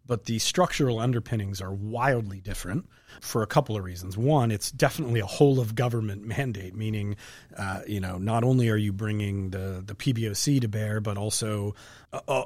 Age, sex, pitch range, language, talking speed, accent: 30-49, male, 105-120 Hz, English, 180 wpm, American